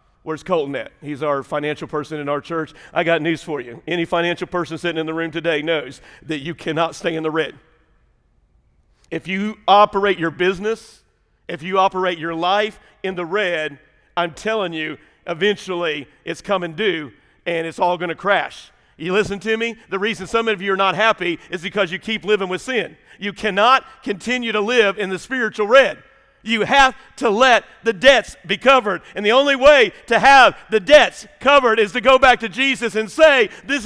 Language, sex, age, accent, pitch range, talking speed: English, male, 50-69, American, 160-225 Hz, 195 wpm